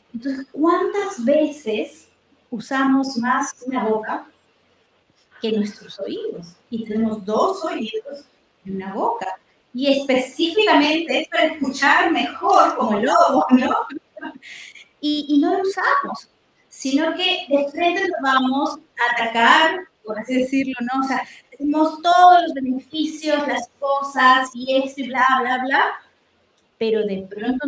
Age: 30-49